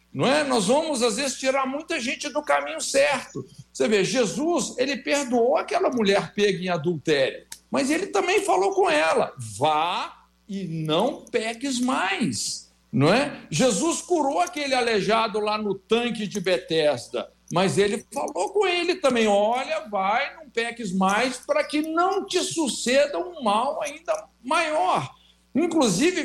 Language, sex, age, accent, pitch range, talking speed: Portuguese, male, 60-79, Brazilian, 200-300 Hz, 150 wpm